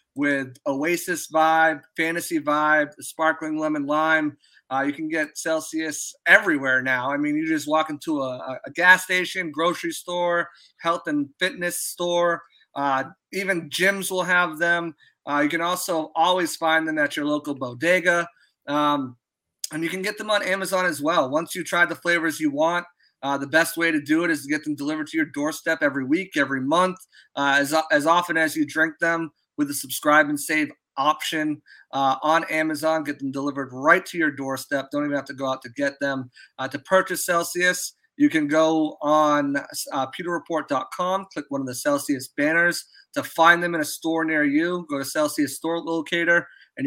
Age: 30-49